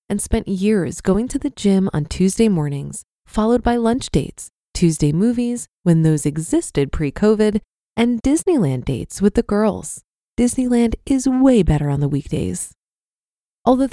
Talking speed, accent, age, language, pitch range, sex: 145 wpm, American, 20-39, English, 180-230 Hz, female